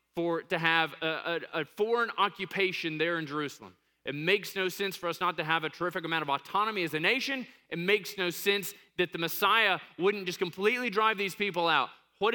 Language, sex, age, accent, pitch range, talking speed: English, male, 20-39, American, 150-190 Hz, 210 wpm